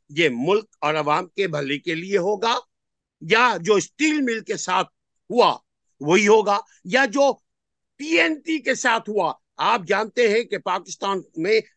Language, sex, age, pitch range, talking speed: Urdu, male, 50-69, 180-245 Hz, 165 wpm